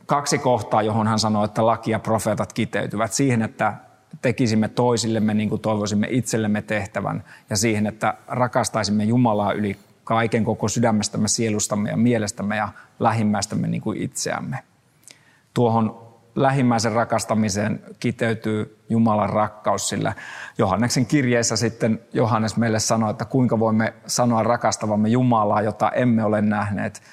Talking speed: 130 wpm